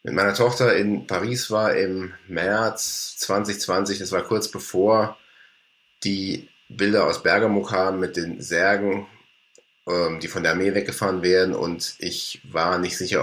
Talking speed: 150 wpm